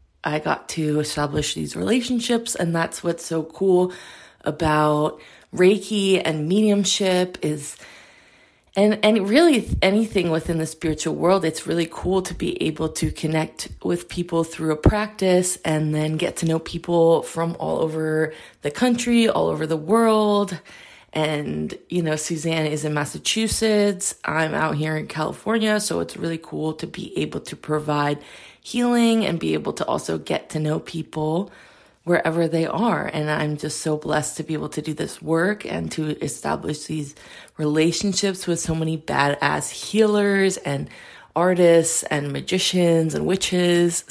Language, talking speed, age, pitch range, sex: English, 155 wpm, 20-39, 155-190 Hz, female